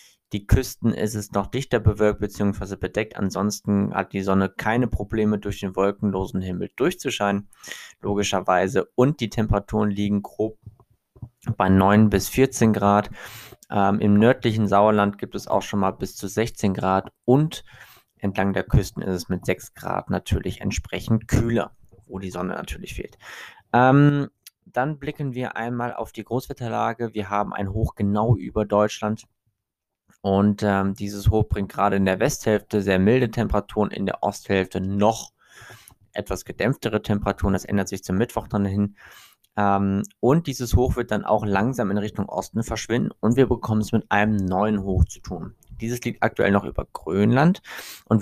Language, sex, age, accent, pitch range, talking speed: German, male, 20-39, German, 100-115 Hz, 165 wpm